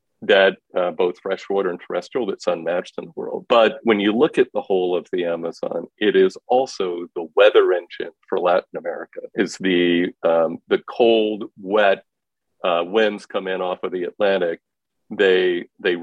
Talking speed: 170 wpm